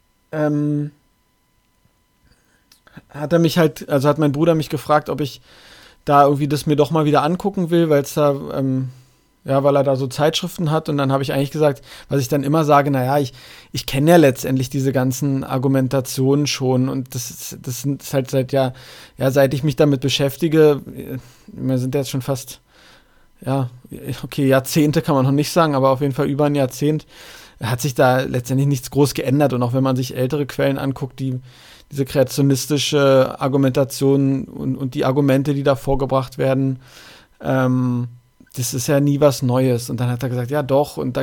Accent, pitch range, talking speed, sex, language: German, 130-150 Hz, 190 wpm, male, German